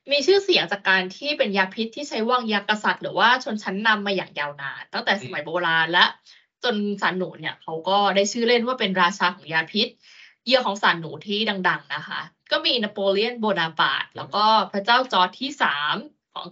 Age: 20-39